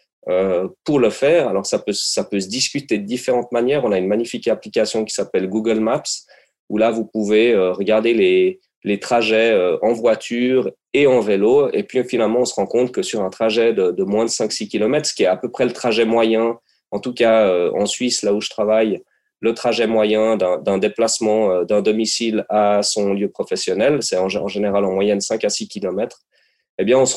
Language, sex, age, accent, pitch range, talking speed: French, male, 30-49, French, 105-130 Hz, 210 wpm